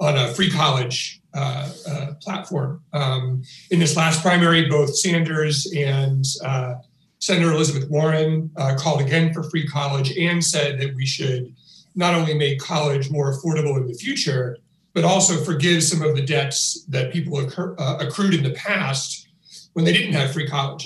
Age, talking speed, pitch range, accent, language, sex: 40-59, 175 wpm, 135-165 Hz, American, English, male